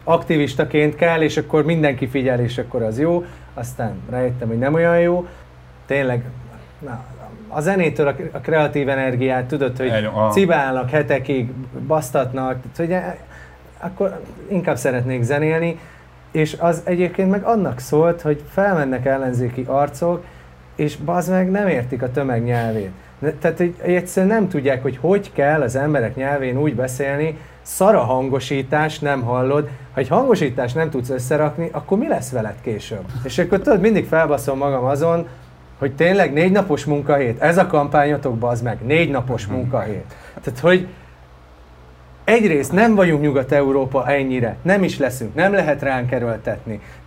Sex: male